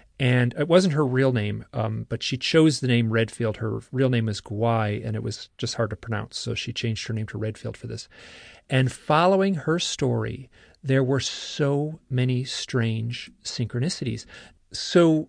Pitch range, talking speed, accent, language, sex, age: 115-135 Hz, 175 wpm, American, English, male, 40-59